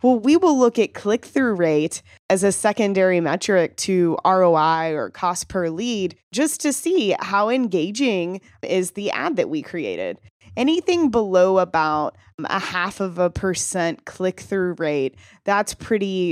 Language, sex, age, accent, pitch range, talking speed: English, female, 20-39, American, 175-215 Hz, 145 wpm